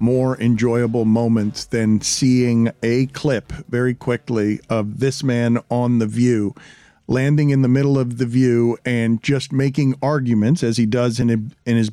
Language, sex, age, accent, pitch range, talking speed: English, male, 50-69, American, 135-185 Hz, 160 wpm